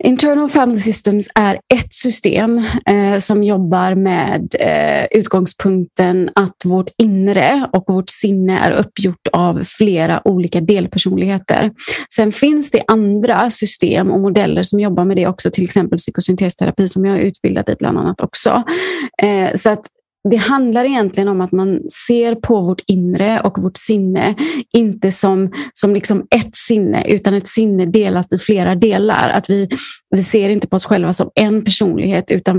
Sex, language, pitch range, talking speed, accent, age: female, Swedish, 185-220 Hz, 155 wpm, native, 30-49